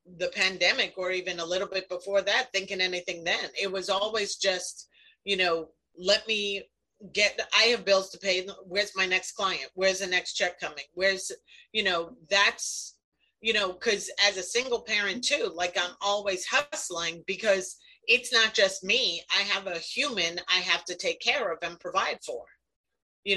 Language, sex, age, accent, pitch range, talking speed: English, female, 40-59, American, 180-215 Hz, 180 wpm